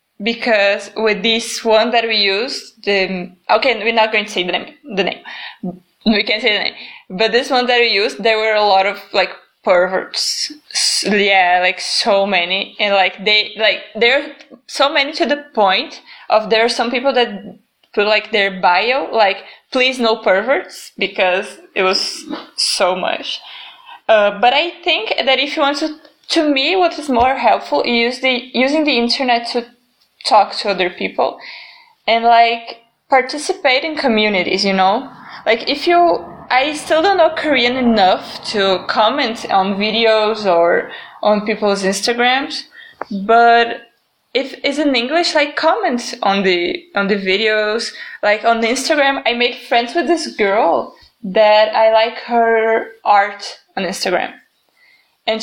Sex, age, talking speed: female, 20-39, 160 wpm